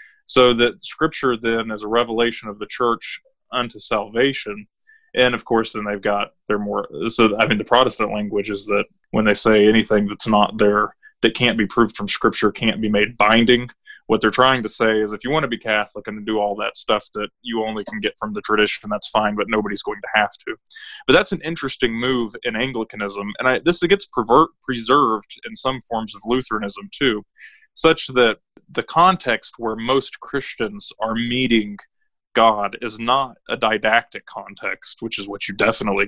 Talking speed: 190 wpm